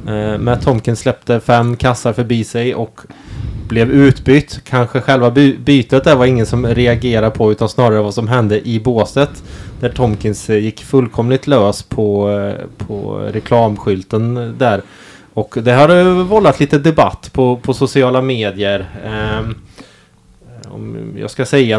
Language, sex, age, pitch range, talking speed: Swedish, male, 20-39, 105-125 Hz, 145 wpm